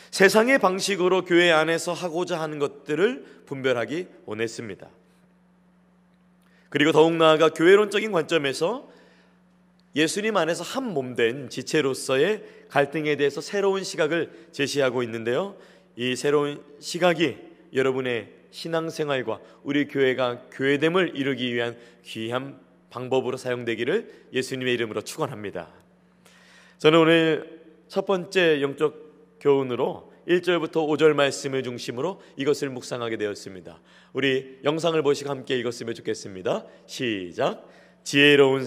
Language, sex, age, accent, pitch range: Korean, male, 30-49, native, 125-180 Hz